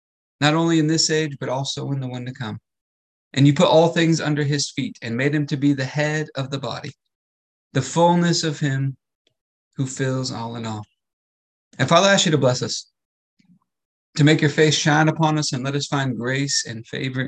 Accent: American